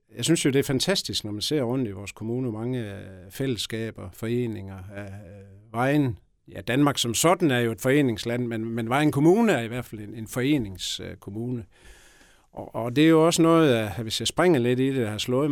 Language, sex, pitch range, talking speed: Danish, male, 105-145 Hz, 195 wpm